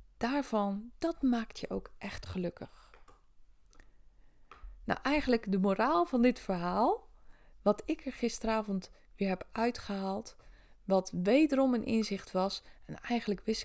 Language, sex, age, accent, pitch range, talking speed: Dutch, female, 20-39, Dutch, 185-240 Hz, 130 wpm